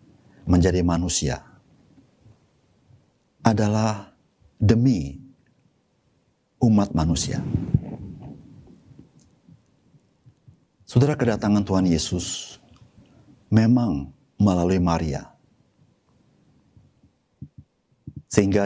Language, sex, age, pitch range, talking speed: Indonesian, male, 50-69, 85-115 Hz, 45 wpm